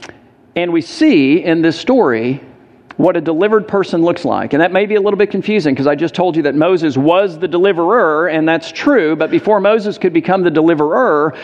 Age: 50-69